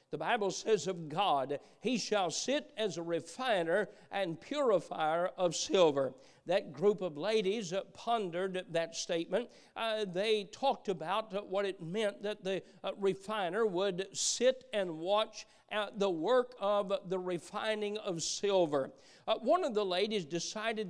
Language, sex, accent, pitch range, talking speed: English, male, American, 185-220 Hz, 150 wpm